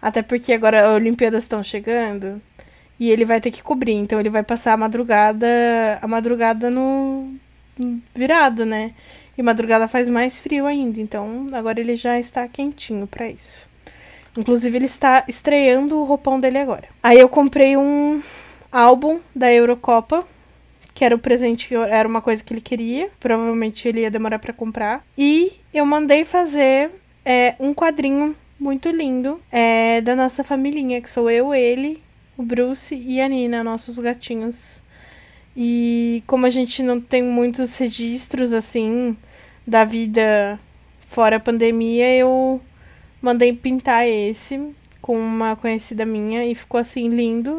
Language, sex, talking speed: Portuguese, female, 155 wpm